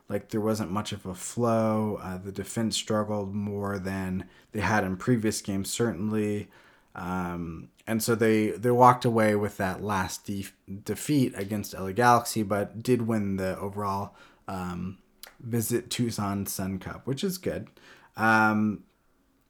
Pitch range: 95-115 Hz